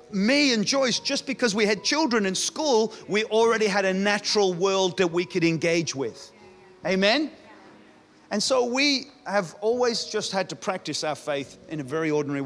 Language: English